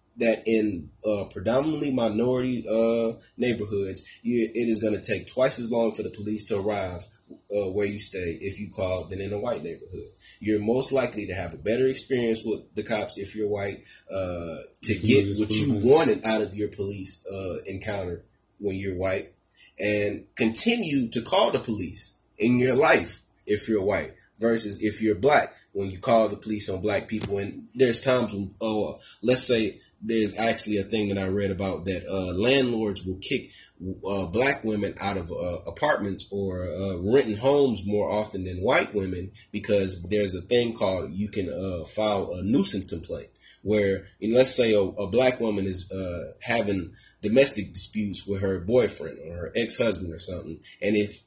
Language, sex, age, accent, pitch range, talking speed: English, male, 30-49, American, 100-115 Hz, 185 wpm